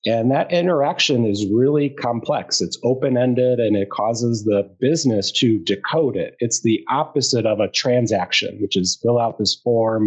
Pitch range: 110-135 Hz